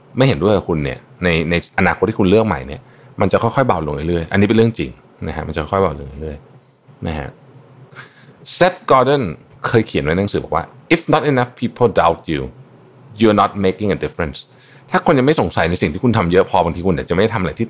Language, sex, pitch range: Thai, male, 85-135 Hz